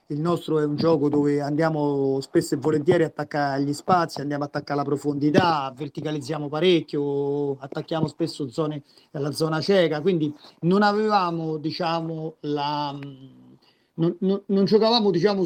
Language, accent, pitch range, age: Italian, native, 150-175 Hz, 40-59